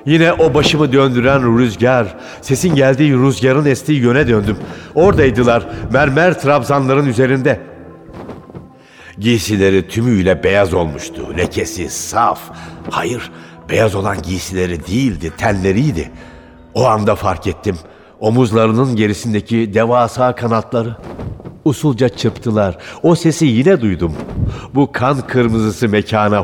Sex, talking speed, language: male, 100 wpm, Turkish